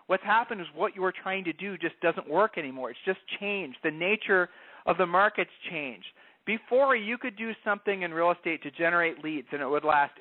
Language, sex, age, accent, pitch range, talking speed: English, male, 40-59, American, 160-210 Hz, 220 wpm